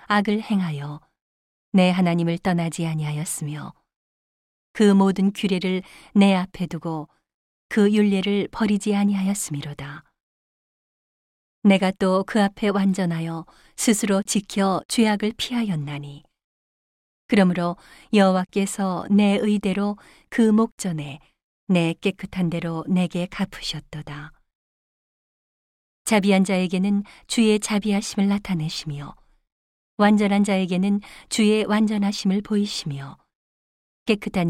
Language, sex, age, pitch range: Korean, female, 40-59, 165-205 Hz